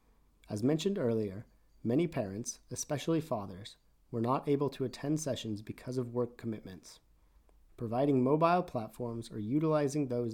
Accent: American